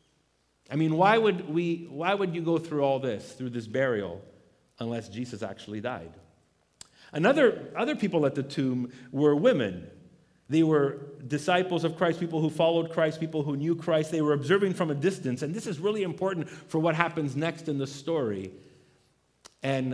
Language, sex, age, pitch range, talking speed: English, male, 50-69, 135-185 Hz, 180 wpm